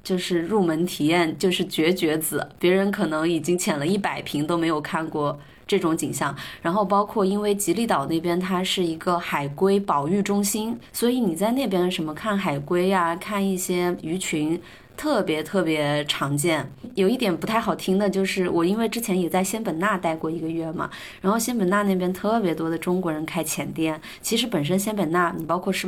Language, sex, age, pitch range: Chinese, female, 20-39, 160-195 Hz